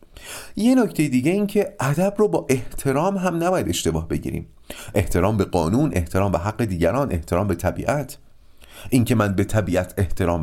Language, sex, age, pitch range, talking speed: Persian, male, 40-59, 90-145 Hz, 160 wpm